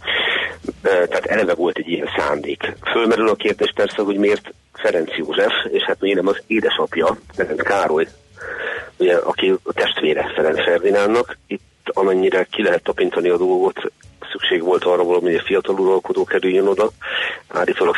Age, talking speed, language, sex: 40-59, 155 wpm, Hungarian, male